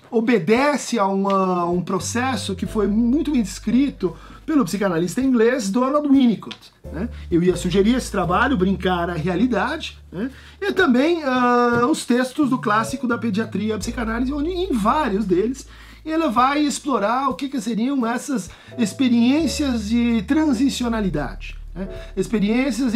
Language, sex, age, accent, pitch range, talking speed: Portuguese, male, 50-69, Brazilian, 195-260 Hz, 140 wpm